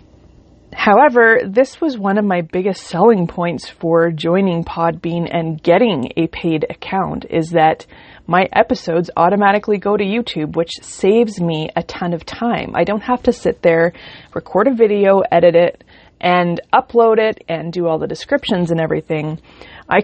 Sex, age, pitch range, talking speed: female, 20-39, 165-215 Hz, 160 wpm